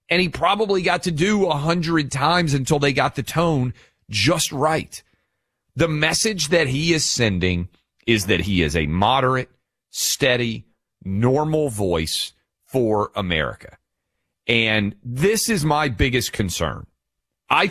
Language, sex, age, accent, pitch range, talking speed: English, male, 40-59, American, 100-155 Hz, 135 wpm